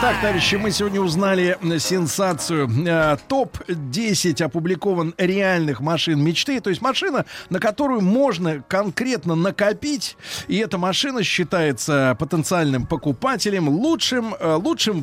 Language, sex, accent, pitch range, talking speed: Russian, male, native, 155-215 Hz, 110 wpm